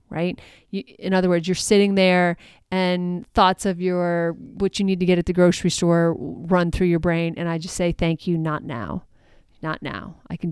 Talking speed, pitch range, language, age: 205 wpm, 170-200 Hz, English, 30-49